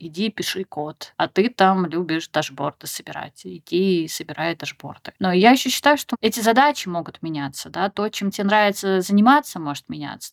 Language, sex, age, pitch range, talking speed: Russian, female, 20-39, 170-210 Hz, 170 wpm